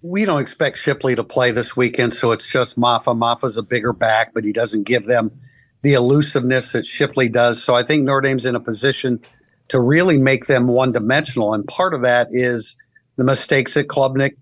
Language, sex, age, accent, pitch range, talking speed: English, male, 50-69, American, 120-140 Hz, 200 wpm